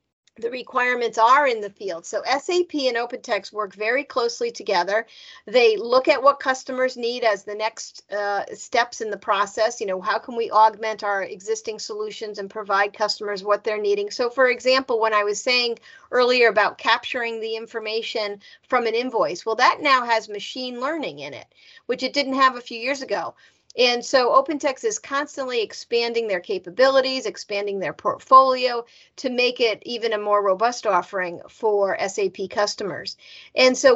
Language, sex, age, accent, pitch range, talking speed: English, female, 40-59, American, 215-270 Hz, 175 wpm